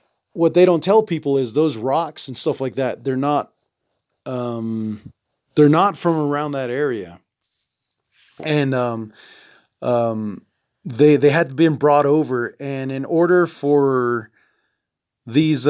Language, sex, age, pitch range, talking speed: English, male, 30-49, 125-155 Hz, 140 wpm